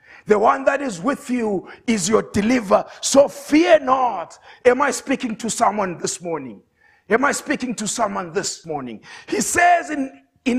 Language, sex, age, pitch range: English, male, 50-69, 230-310 Hz